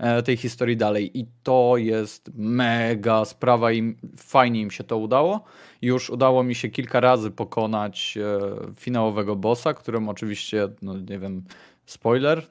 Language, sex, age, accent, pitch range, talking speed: Polish, male, 20-39, native, 105-120 Hz, 145 wpm